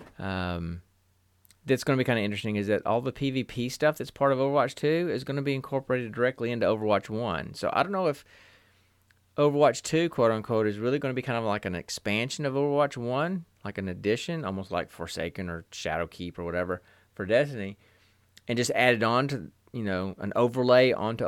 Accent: American